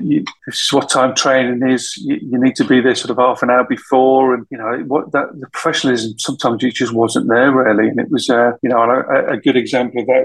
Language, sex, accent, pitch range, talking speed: English, male, British, 125-150 Hz, 260 wpm